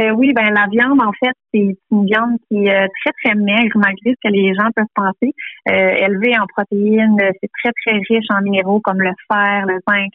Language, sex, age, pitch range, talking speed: French, female, 30-49, 195-220 Hz, 215 wpm